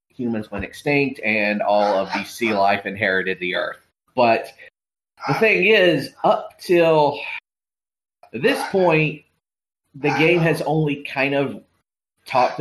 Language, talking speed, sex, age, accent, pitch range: English, 130 wpm, male, 30-49, American, 105-135 Hz